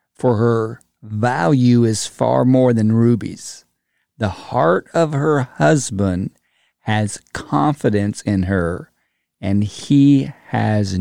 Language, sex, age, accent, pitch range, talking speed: English, male, 50-69, American, 110-145 Hz, 110 wpm